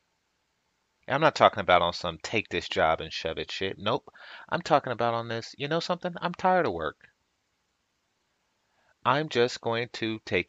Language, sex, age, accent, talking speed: English, male, 30-49, American, 175 wpm